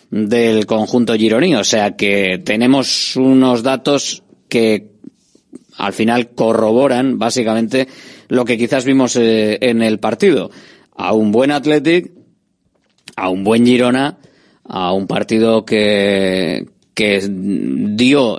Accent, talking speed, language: Spanish, 120 wpm, Spanish